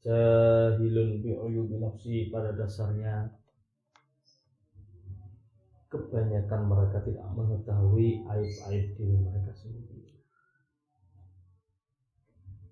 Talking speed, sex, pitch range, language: 55 wpm, male, 100-120 Hz, Malay